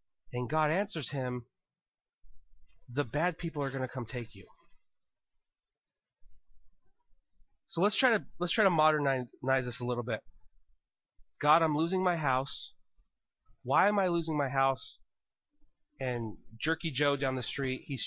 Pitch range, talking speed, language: 140-225 Hz, 145 wpm, English